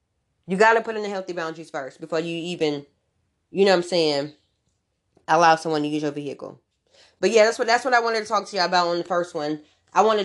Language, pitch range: English, 150-185 Hz